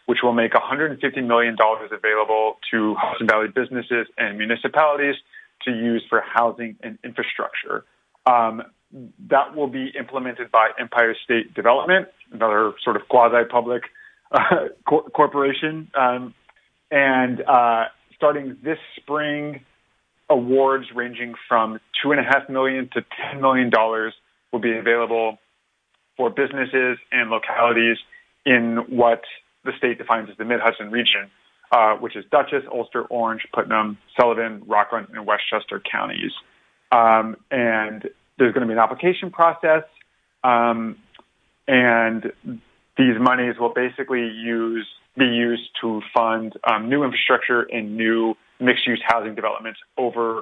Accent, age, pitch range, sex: American, 30-49, 115-135 Hz, male